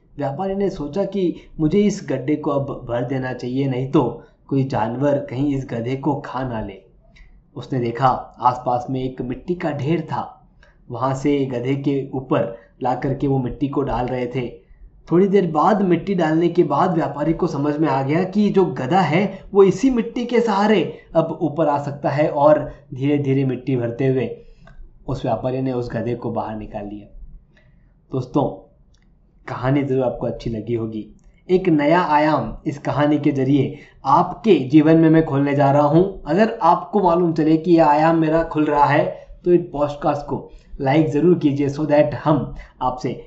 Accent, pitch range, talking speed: native, 130-170 Hz, 180 wpm